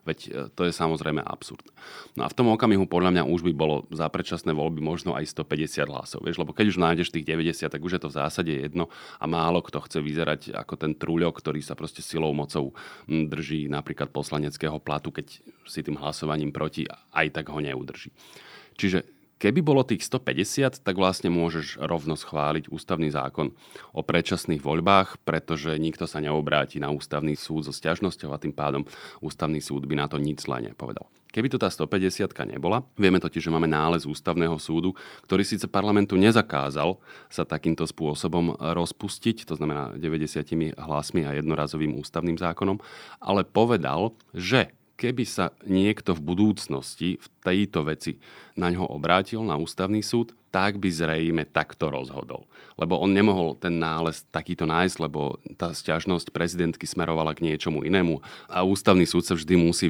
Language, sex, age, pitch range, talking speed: Slovak, male, 30-49, 75-90 Hz, 170 wpm